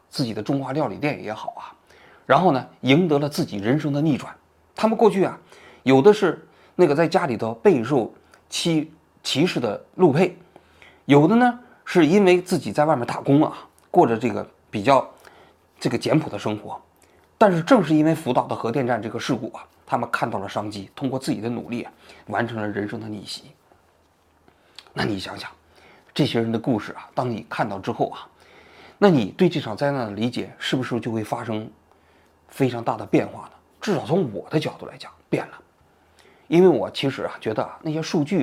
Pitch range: 120-185 Hz